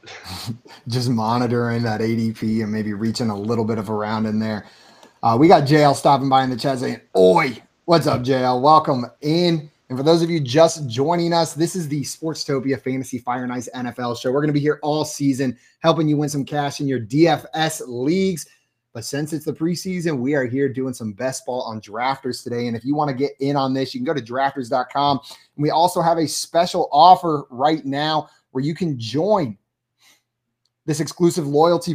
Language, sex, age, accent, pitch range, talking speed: English, male, 30-49, American, 130-155 Hz, 205 wpm